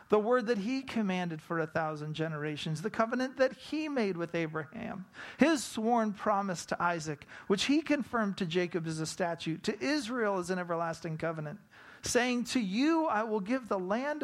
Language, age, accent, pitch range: English, 40-59, American, 160-255 Hz